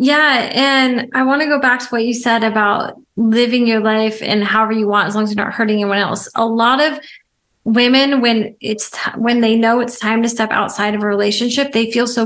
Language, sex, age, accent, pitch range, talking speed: English, female, 20-39, American, 220-260 Hz, 225 wpm